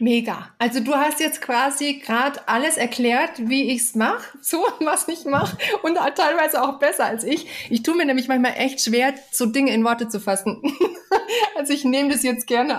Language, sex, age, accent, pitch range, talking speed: German, female, 30-49, German, 215-265 Hz, 215 wpm